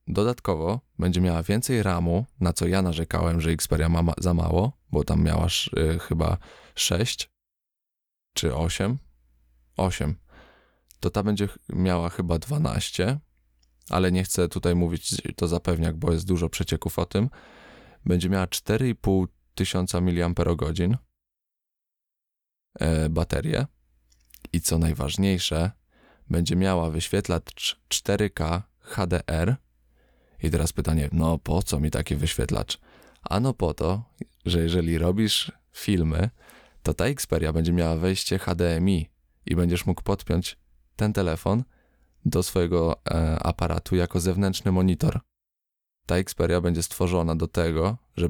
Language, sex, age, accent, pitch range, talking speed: Polish, male, 20-39, native, 80-95 Hz, 120 wpm